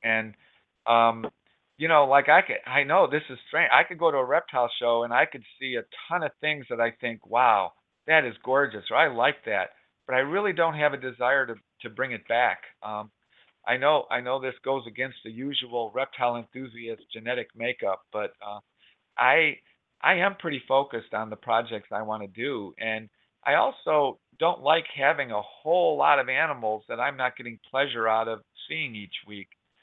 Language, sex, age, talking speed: English, male, 50-69, 200 wpm